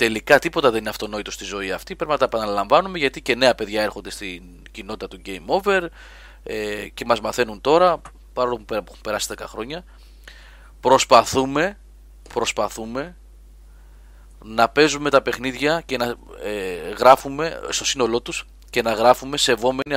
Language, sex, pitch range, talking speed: Greek, male, 100-135 Hz, 150 wpm